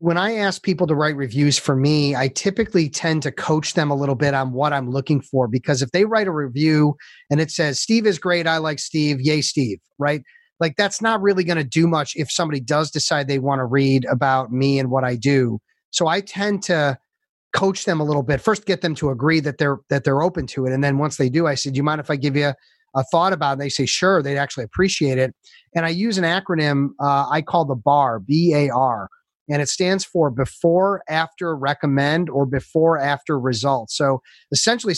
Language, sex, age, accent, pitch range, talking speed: English, male, 30-49, American, 140-170 Hz, 230 wpm